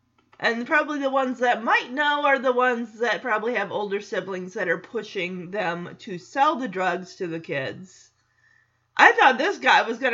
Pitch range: 195-295 Hz